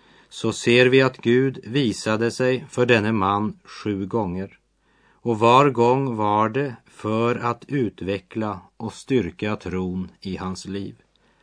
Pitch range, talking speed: 95-125 Hz, 135 wpm